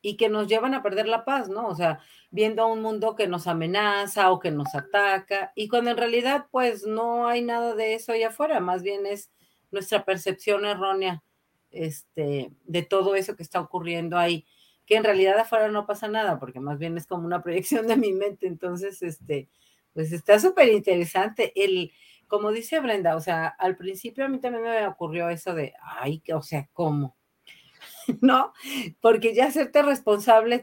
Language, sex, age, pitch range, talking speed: Spanish, female, 40-59, 180-240 Hz, 185 wpm